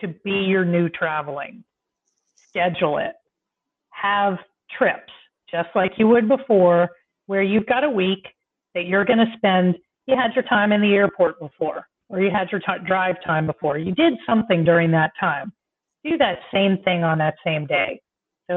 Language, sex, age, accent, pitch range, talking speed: English, female, 40-59, American, 170-200 Hz, 175 wpm